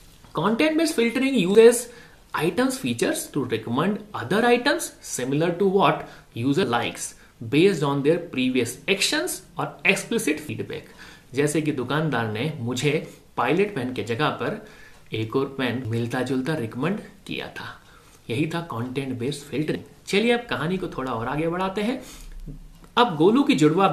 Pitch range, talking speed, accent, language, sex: 130-195 Hz, 90 wpm, native, Hindi, male